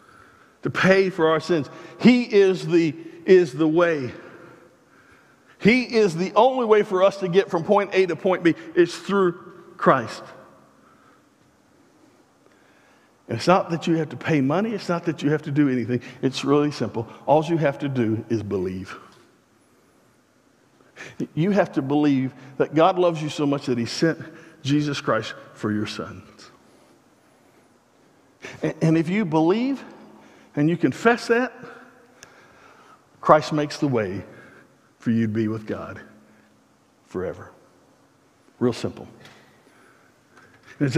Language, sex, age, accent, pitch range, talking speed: English, male, 50-69, American, 130-170 Hz, 140 wpm